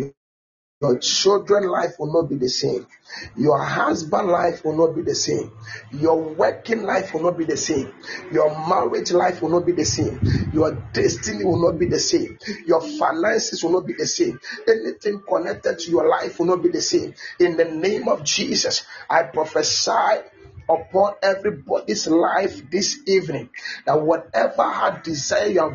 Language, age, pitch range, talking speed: English, 40-59, 165-245 Hz, 170 wpm